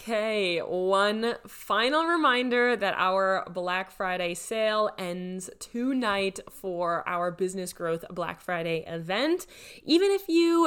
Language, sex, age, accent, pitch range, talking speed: English, female, 20-39, American, 185-225 Hz, 120 wpm